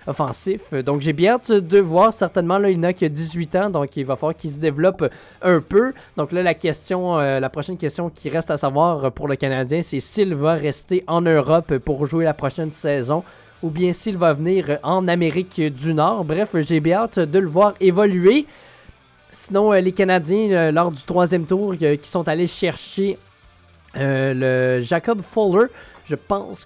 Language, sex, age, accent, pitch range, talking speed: French, male, 20-39, Canadian, 150-195 Hz, 190 wpm